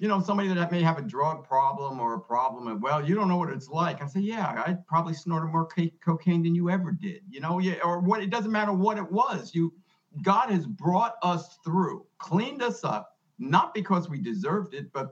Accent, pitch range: American, 160-195 Hz